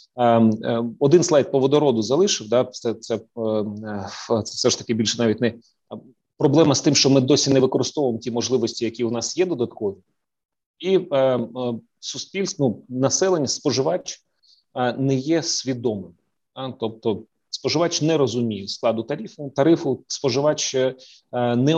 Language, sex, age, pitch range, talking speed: Ukrainian, male, 30-49, 115-145 Hz, 120 wpm